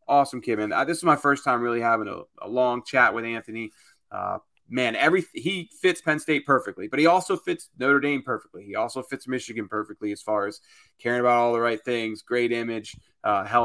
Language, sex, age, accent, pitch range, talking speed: English, male, 30-49, American, 110-140 Hz, 210 wpm